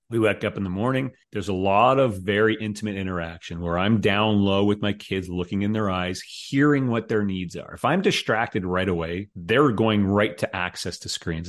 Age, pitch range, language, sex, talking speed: 30-49, 90-105 Hz, English, male, 215 wpm